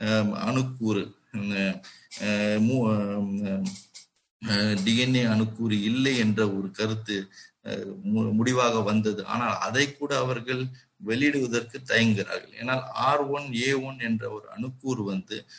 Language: Tamil